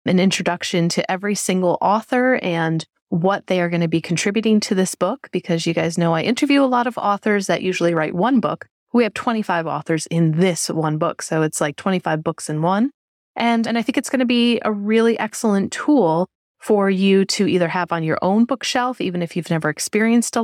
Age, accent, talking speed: 30-49, American, 215 wpm